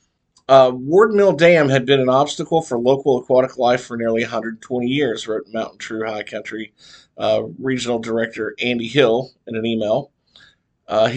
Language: English